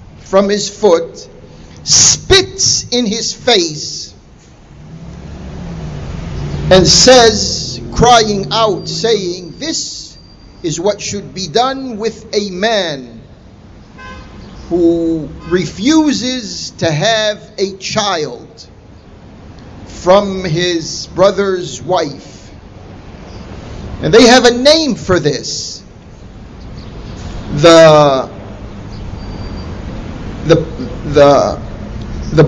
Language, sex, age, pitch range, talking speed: English, male, 50-69, 150-225 Hz, 80 wpm